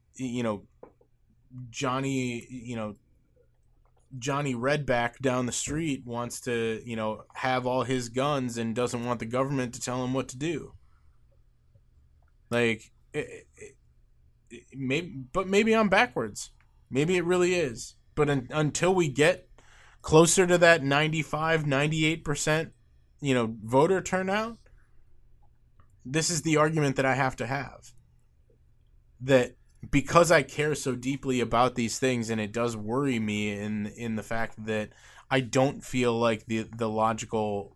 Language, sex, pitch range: English, male, 110-135 Hz